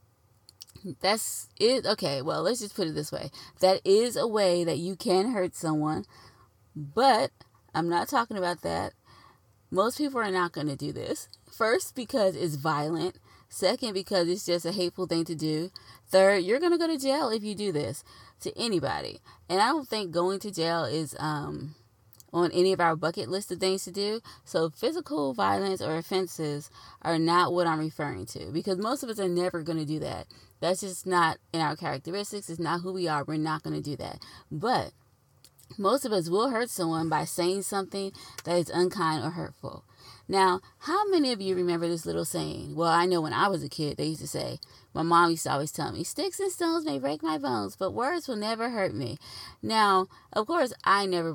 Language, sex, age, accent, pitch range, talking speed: English, female, 20-39, American, 155-200 Hz, 205 wpm